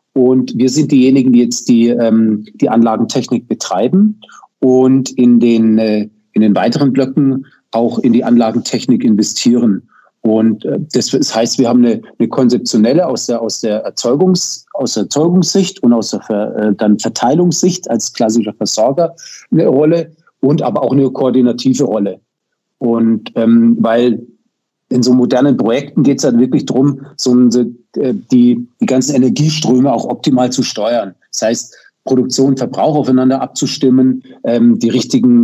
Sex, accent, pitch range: male, German, 115-150 Hz